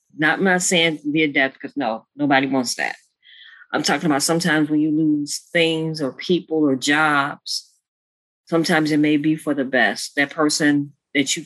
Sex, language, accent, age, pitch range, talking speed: female, English, American, 40-59, 145-175 Hz, 175 wpm